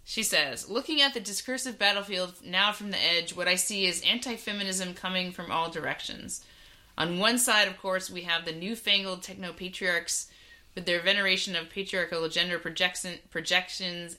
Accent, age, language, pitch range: American, 30-49, English, 165-200 Hz